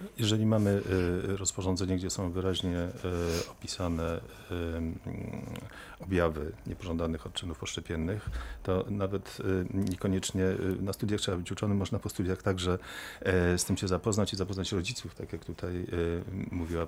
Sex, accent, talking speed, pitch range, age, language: male, native, 120 wpm, 90-105 Hz, 40-59, Polish